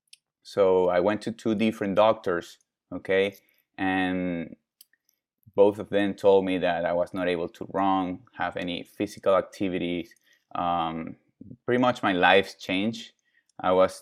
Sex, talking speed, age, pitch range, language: male, 140 wpm, 20-39, 90-105 Hz, English